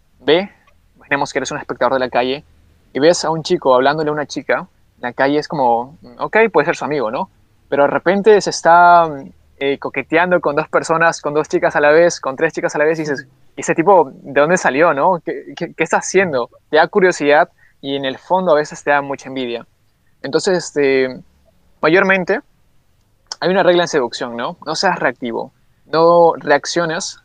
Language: Spanish